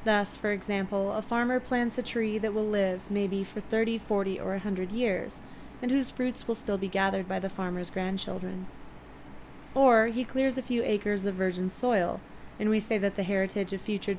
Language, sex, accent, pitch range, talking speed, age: English, female, American, 190-225 Hz, 200 wpm, 20-39